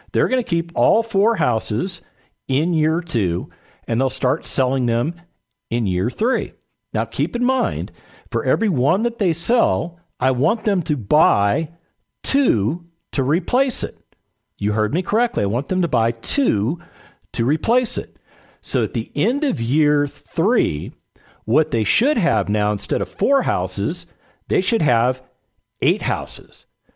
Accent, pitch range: American, 120-185 Hz